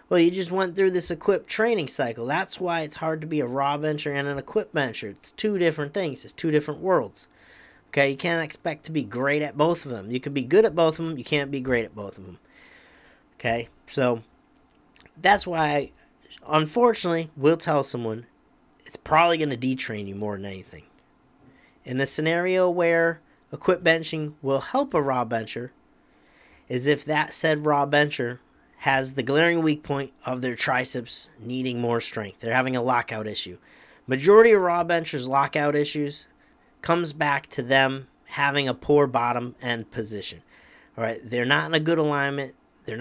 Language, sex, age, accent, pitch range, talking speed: English, male, 40-59, American, 125-160 Hz, 185 wpm